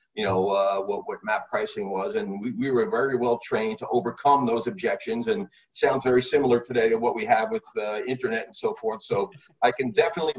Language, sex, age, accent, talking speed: English, male, 40-59, American, 220 wpm